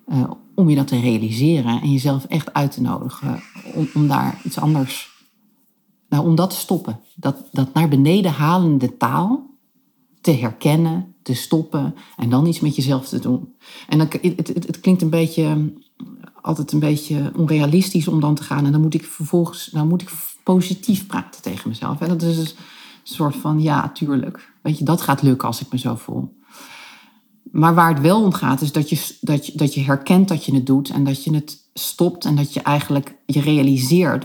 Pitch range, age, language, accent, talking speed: 140-175 Hz, 40-59, Dutch, Dutch, 185 wpm